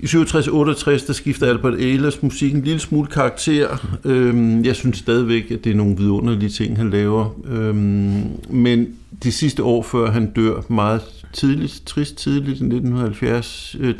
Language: Danish